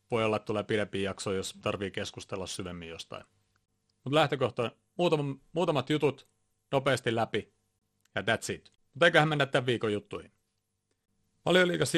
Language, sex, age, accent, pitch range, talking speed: Finnish, male, 30-49, native, 100-125 Hz, 135 wpm